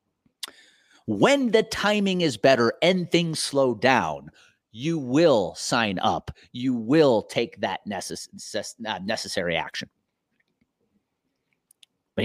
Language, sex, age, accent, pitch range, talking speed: English, male, 30-49, American, 95-140 Hz, 100 wpm